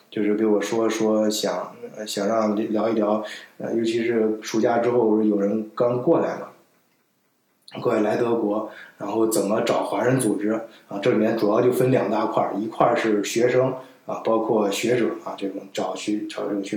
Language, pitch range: Chinese, 105-125 Hz